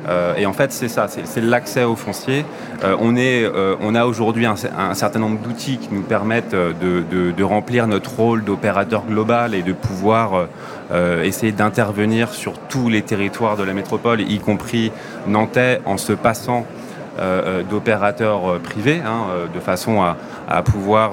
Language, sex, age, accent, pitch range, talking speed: French, male, 30-49, French, 95-110 Hz, 160 wpm